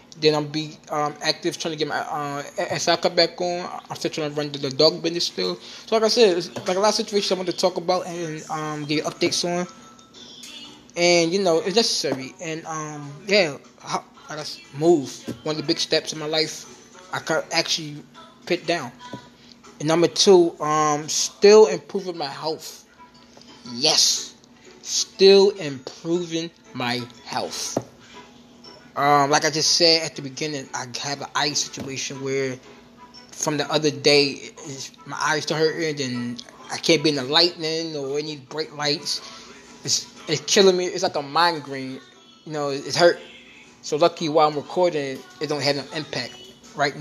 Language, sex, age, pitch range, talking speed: English, male, 20-39, 145-175 Hz, 180 wpm